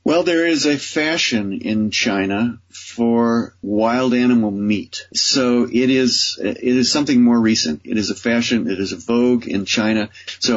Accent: American